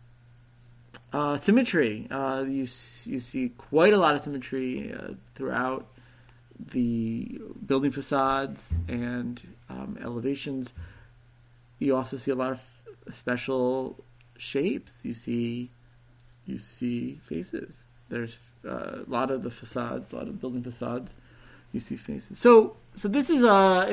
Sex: male